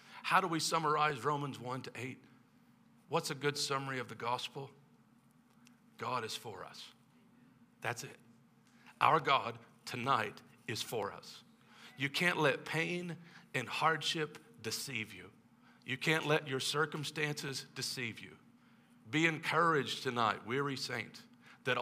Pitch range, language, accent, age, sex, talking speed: 125-160 Hz, English, American, 50-69, male, 130 wpm